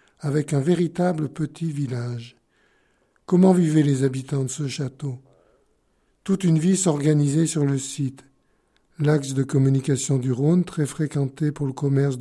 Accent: French